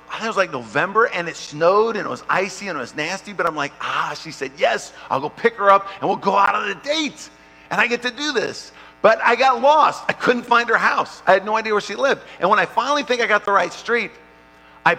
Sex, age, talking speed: male, 50-69, 275 wpm